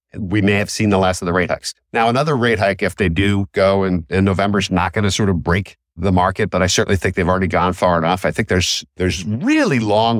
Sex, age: male, 50-69